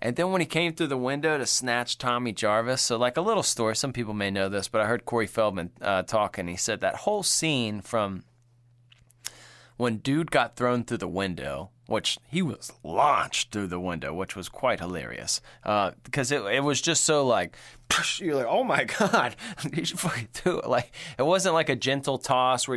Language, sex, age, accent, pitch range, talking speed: English, male, 20-39, American, 110-130 Hz, 210 wpm